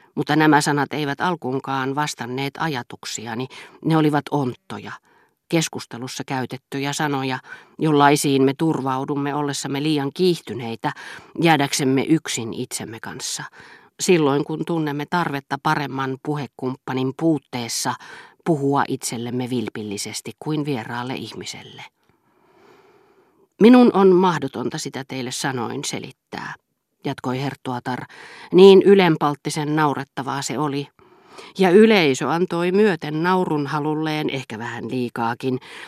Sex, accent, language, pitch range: female, native, Finnish, 130-160 Hz